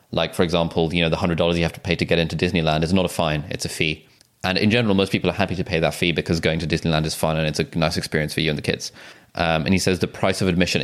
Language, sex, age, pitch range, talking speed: English, male, 20-39, 80-105 Hz, 320 wpm